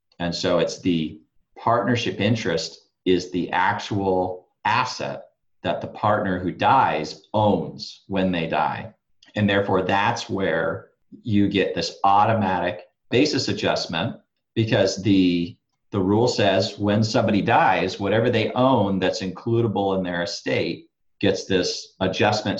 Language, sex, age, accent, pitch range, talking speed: English, male, 40-59, American, 95-110 Hz, 125 wpm